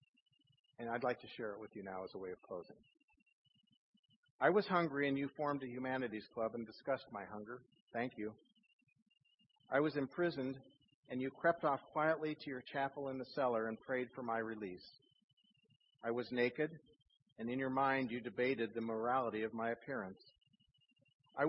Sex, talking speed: male, 175 wpm